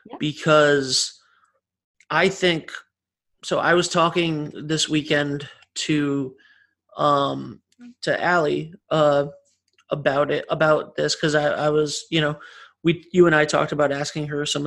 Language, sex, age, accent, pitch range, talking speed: English, male, 30-49, American, 145-160 Hz, 135 wpm